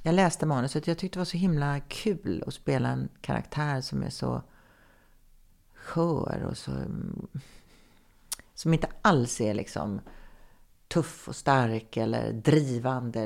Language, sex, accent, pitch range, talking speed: English, female, Swedish, 125-170 Hz, 140 wpm